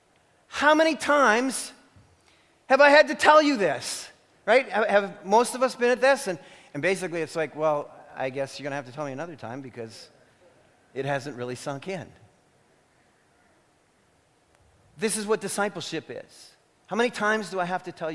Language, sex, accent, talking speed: English, male, American, 180 wpm